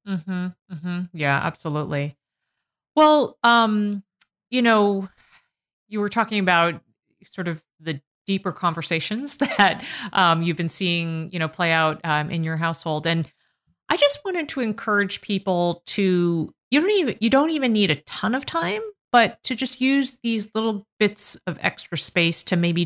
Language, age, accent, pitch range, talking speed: English, 30-49, American, 165-205 Hz, 165 wpm